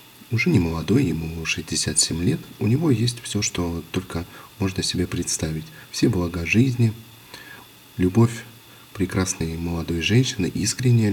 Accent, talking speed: native, 125 wpm